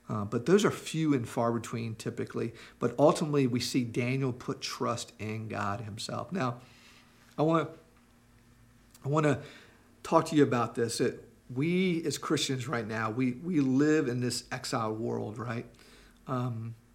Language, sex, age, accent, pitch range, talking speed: English, male, 50-69, American, 115-140 Hz, 160 wpm